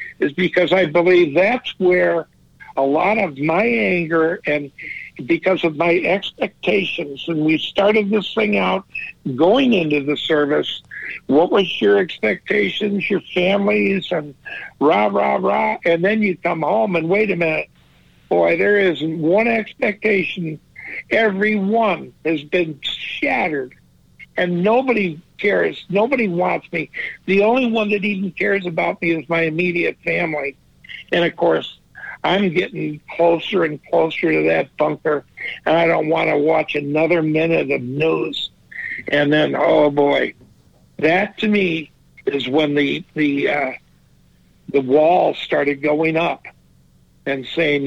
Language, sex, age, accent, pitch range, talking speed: English, male, 60-79, American, 145-190 Hz, 140 wpm